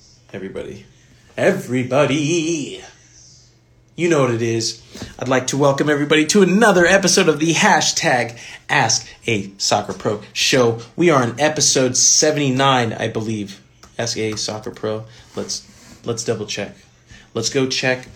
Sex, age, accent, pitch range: male, 30-49, American, 115-135 Hz